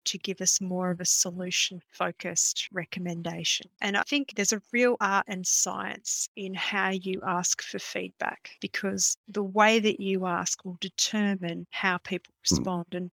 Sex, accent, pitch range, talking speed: female, Australian, 180-210 Hz, 165 wpm